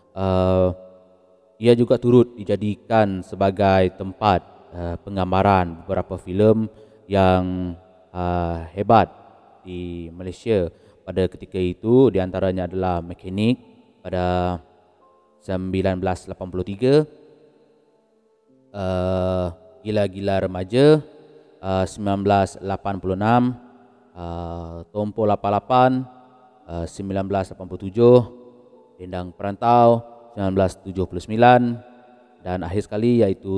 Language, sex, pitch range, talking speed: Malay, male, 90-115 Hz, 75 wpm